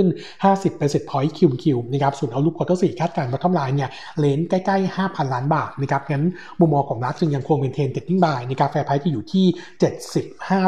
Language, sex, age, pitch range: Thai, male, 60-79, 140-175 Hz